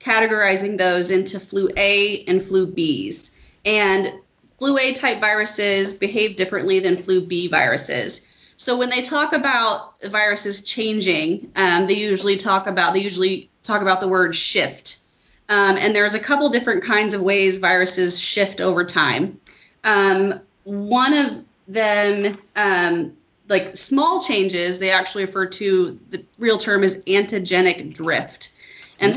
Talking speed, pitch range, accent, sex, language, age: 145 wpm, 185-220 Hz, American, female, English, 30-49